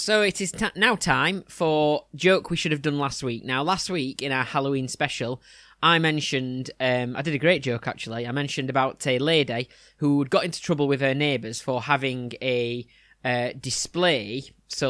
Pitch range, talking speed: 120-145 Hz, 190 wpm